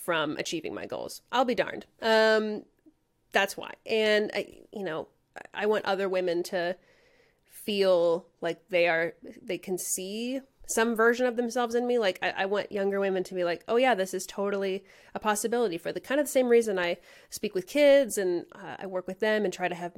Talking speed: 205 wpm